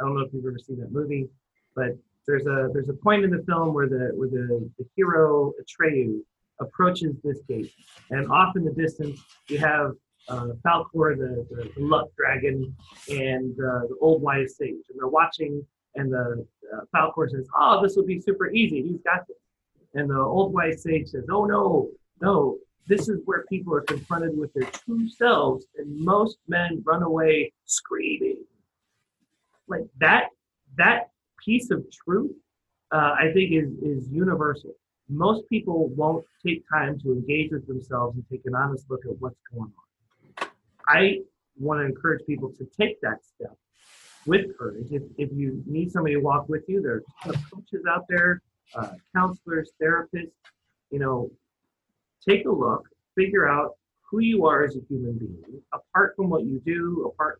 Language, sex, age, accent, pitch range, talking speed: English, male, 30-49, American, 135-185 Hz, 175 wpm